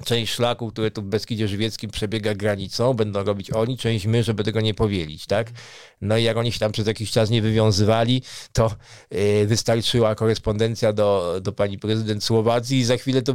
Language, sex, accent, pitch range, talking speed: Polish, male, native, 115-145 Hz, 190 wpm